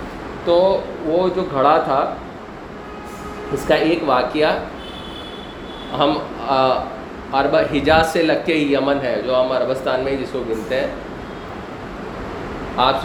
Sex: male